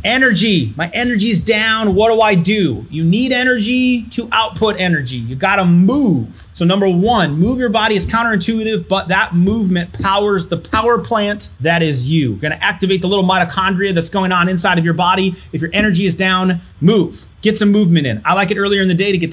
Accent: American